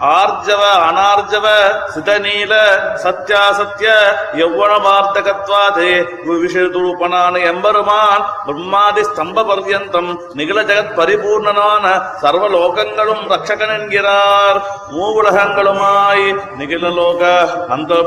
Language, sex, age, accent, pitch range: Tamil, male, 30-49, native, 180-210 Hz